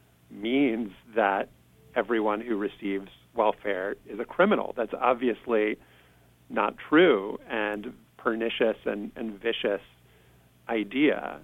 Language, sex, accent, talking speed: English, male, American, 100 wpm